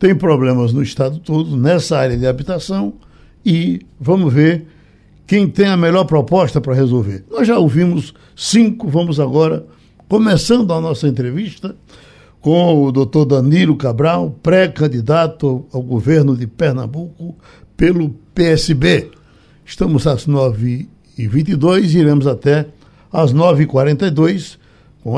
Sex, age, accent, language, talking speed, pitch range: male, 60-79, Brazilian, Portuguese, 125 wpm, 140-185 Hz